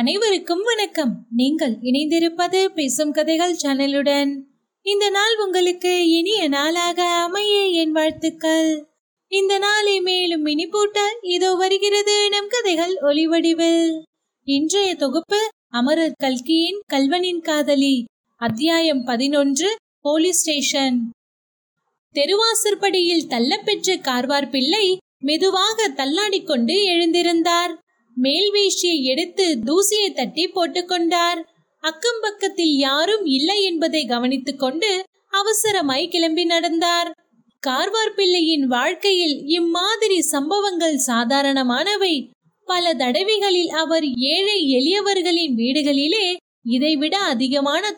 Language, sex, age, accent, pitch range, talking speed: Tamil, female, 20-39, native, 285-385 Hz, 60 wpm